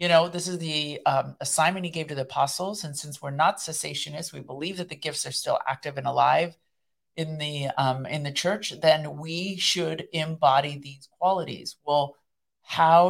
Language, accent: English, American